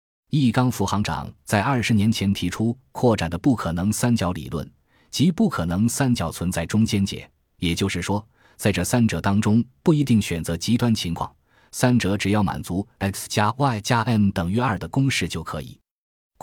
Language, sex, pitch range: Chinese, male, 85-115 Hz